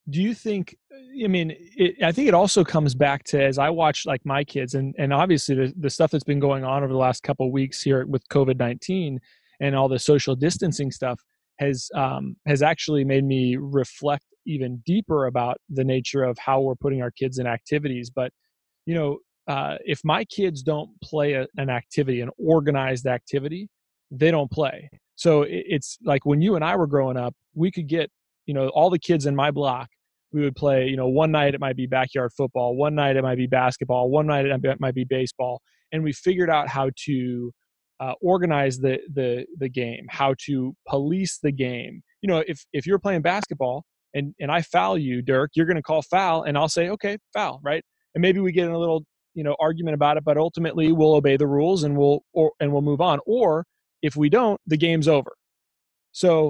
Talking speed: 215 wpm